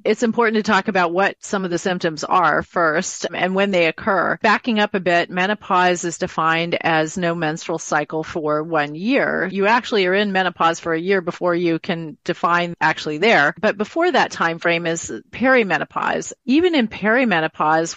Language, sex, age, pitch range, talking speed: English, female, 40-59, 170-215 Hz, 180 wpm